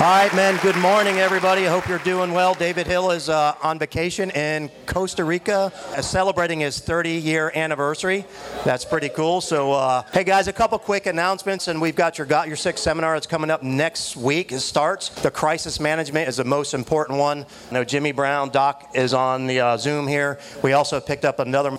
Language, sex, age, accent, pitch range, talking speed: English, male, 40-59, American, 130-170 Hz, 205 wpm